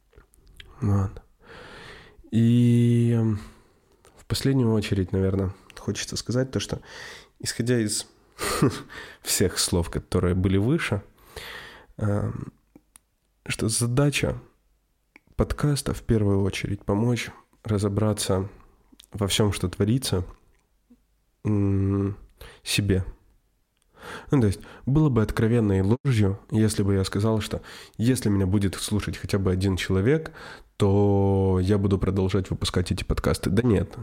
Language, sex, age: Ukrainian, male, 20-39